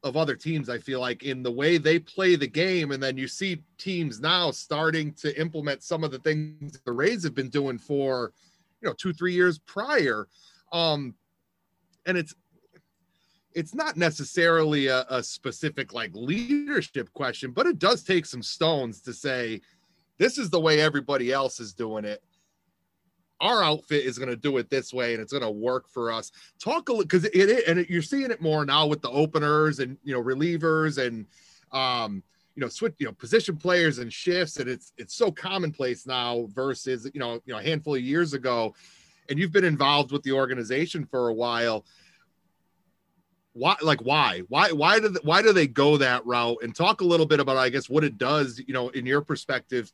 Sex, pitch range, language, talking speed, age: male, 125-165 Hz, English, 205 wpm, 30-49